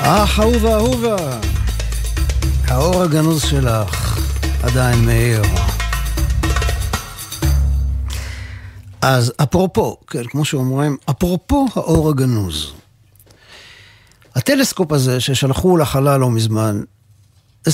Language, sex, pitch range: Hebrew, male, 105-155 Hz